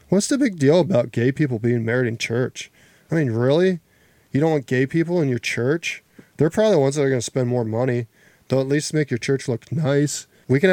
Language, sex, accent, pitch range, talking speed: English, male, American, 120-165 Hz, 240 wpm